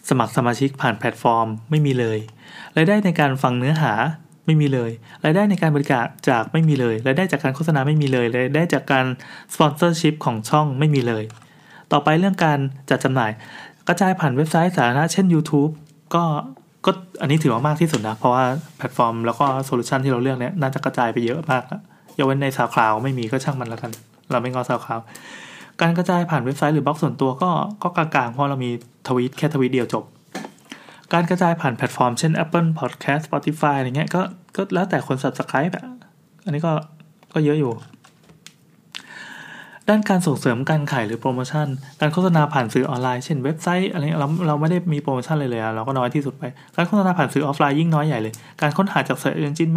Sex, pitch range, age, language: male, 130-160 Hz, 20-39, Thai